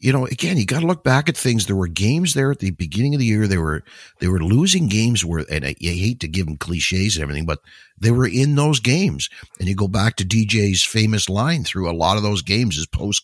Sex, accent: male, American